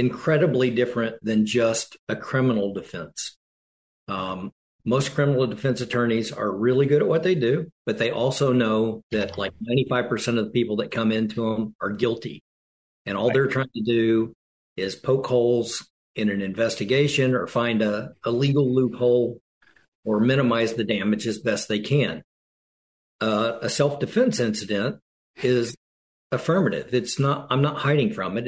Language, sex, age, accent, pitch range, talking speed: English, male, 50-69, American, 105-125 Hz, 155 wpm